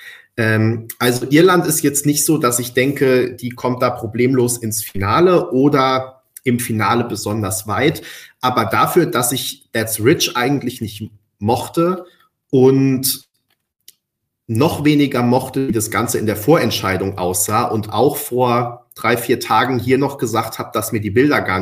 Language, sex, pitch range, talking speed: German, male, 115-145 Hz, 155 wpm